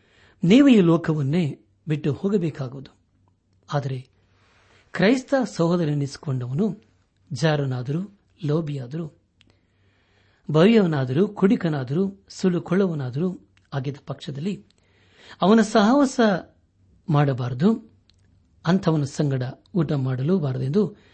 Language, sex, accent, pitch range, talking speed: Kannada, male, native, 100-165 Hz, 60 wpm